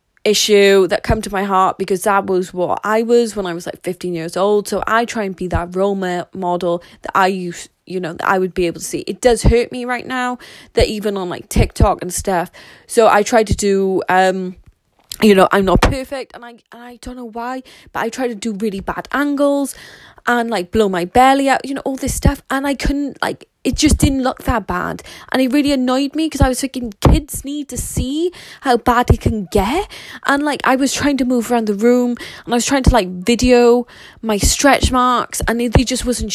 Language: English